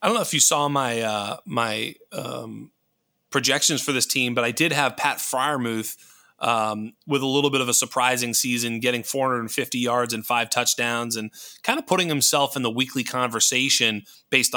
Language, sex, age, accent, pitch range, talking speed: English, male, 30-49, American, 120-145 Hz, 180 wpm